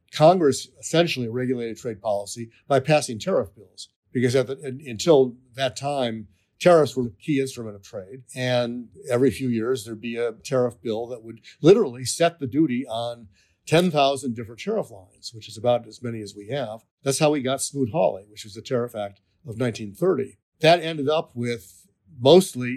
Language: English